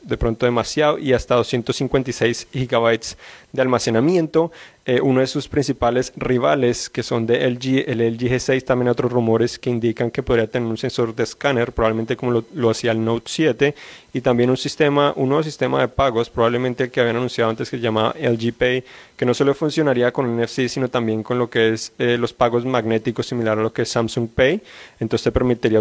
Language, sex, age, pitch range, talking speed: Spanish, male, 30-49, 115-130 Hz, 210 wpm